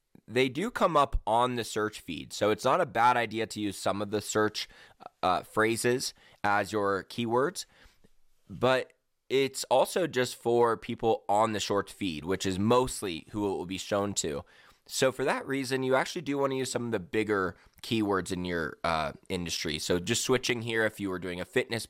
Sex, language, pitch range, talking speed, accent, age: male, English, 100-120 Hz, 200 wpm, American, 20-39